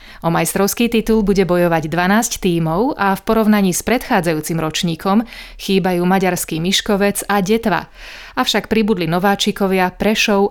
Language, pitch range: Slovak, 175-215 Hz